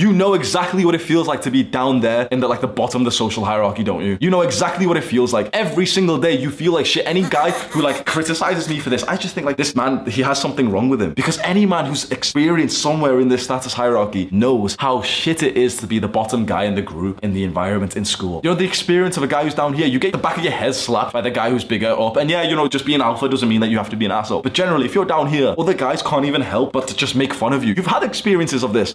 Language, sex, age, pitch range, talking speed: English, male, 20-39, 110-175 Hz, 305 wpm